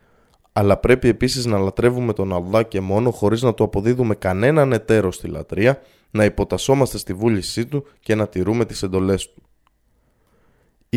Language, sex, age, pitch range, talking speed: Greek, male, 20-39, 95-120 Hz, 160 wpm